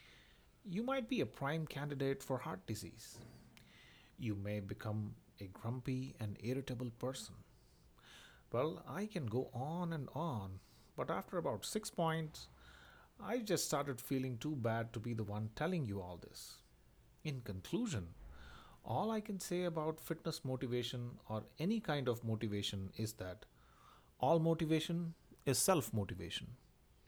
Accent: Indian